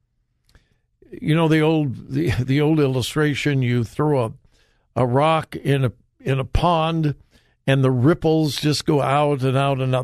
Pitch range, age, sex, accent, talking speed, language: 125-160 Hz, 60-79, male, American, 165 wpm, English